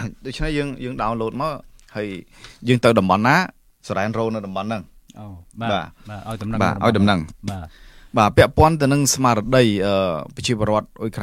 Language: English